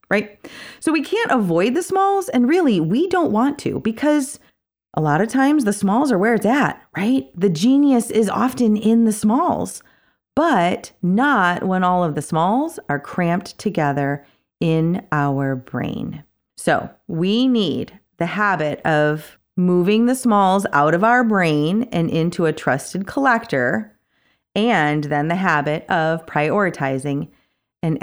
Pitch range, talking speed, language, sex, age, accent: 155-230 Hz, 150 wpm, English, female, 30-49, American